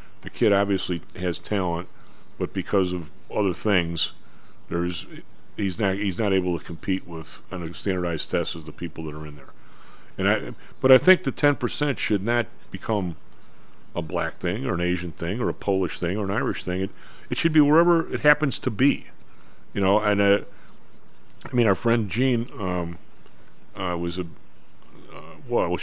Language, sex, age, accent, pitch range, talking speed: English, male, 50-69, American, 85-110 Hz, 185 wpm